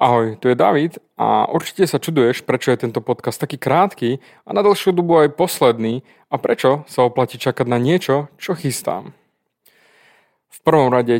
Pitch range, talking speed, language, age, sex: 125-160 Hz, 170 wpm, Slovak, 30-49, male